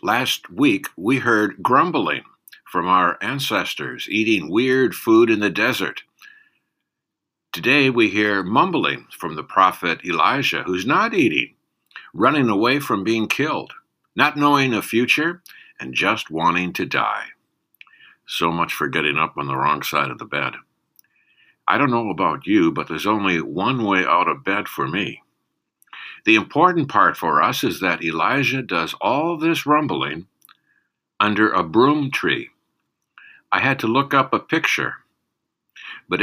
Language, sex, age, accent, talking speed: English, male, 60-79, American, 150 wpm